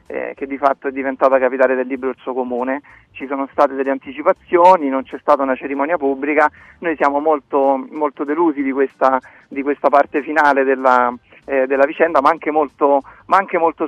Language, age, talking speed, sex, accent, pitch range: Italian, 40-59, 180 wpm, male, native, 135-155 Hz